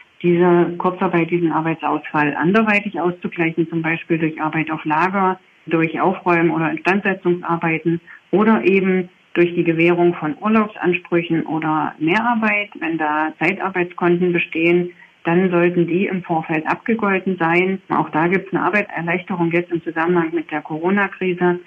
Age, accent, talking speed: 40-59, German, 135 wpm